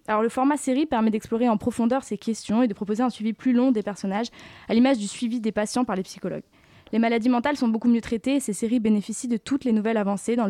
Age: 20-39